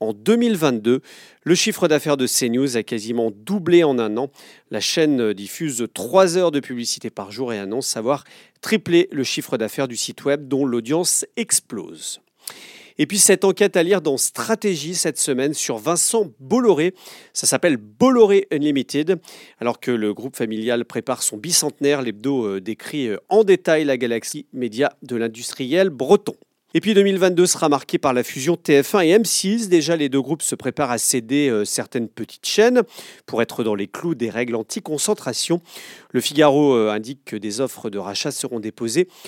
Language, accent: French, French